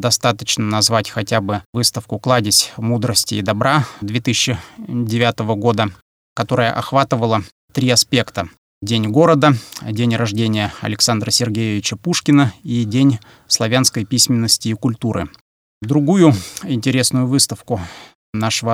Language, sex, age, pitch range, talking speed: Russian, male, 30-49, 110-140 Hz, 100 wpm